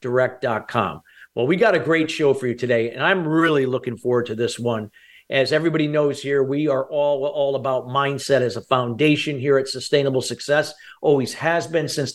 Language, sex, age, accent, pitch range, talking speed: English, male, 50-69, American, 135-170 Hz, 195 wpm